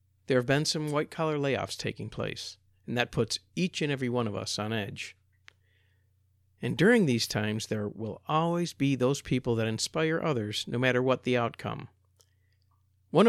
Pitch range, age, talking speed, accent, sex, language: 95-140 Hz, 50-69, 170 wpm, American, male, English